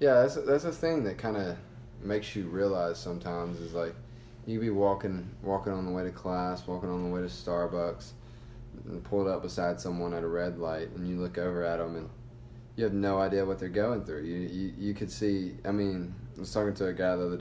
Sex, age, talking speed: male, 20-39, 240 wpm